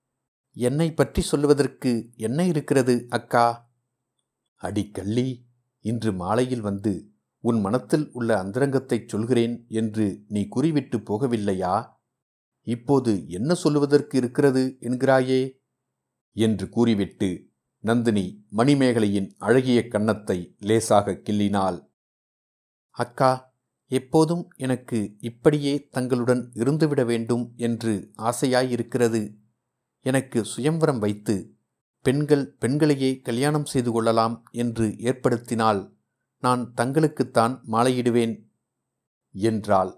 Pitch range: 110-130 Hz